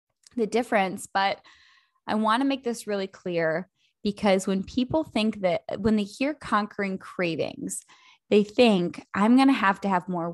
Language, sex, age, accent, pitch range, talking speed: English, female, 10-29, American, 180-220 Hz, 170 wpm